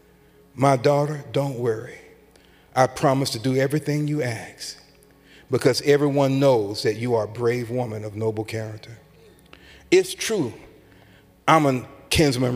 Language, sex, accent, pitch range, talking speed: English, male, American, 120-155 Hz, 135 wpm